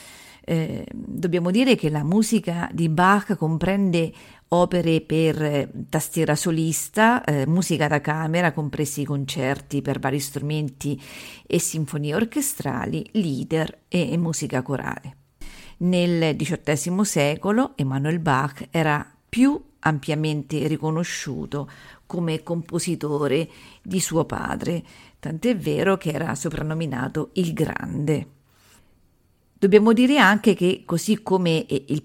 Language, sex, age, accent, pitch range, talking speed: Italian, female, 40-59, native, 150-190 Hz, 105 wpm